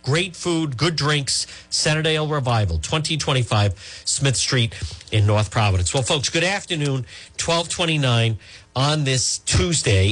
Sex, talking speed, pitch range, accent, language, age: male, 120 wpm, 105-165 Hz, American, English, 50-69